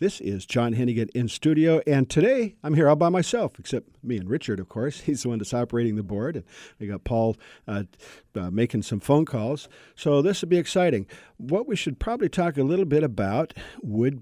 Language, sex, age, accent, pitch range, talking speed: English, male, 50-69, American, 105-145 Hz, 215 wpm